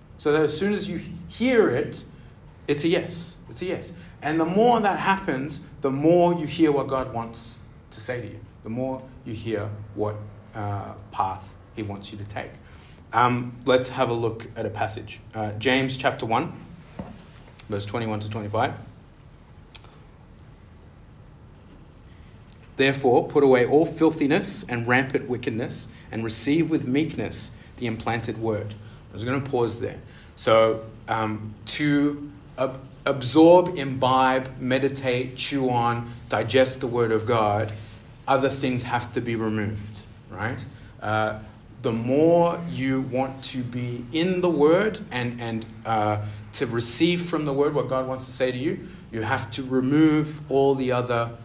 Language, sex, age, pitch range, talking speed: English, male, 30-49, 110-140 Hz, 155 wpm